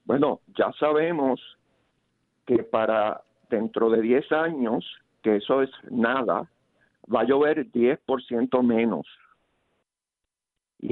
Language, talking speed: Spanish, 105 wpm